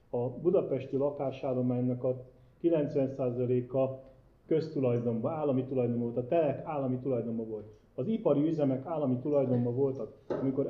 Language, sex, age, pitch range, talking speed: Hungarian, male, 30-49, 120-145 Hz, 120 wpm